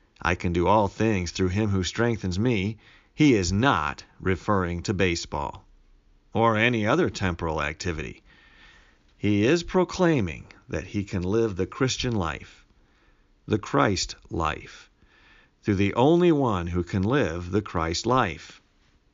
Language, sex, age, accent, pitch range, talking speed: English, male, 50-69, American, 85-115 Hz, 140 wpm